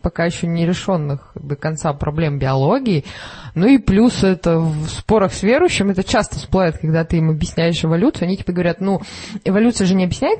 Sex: female